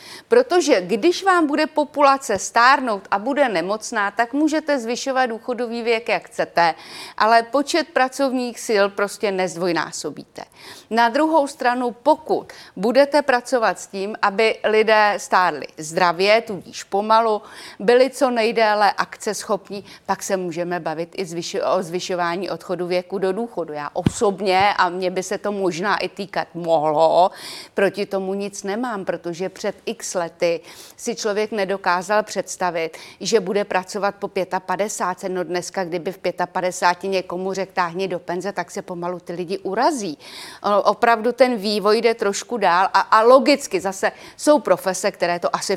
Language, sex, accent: Czech, female, native